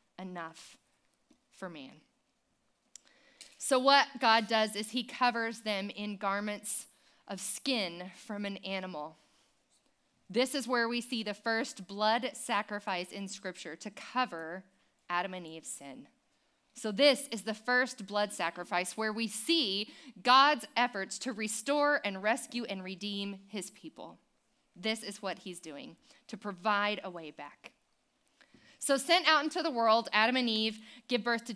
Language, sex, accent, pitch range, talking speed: English, female, American, 205-275 Hz, 145 wpm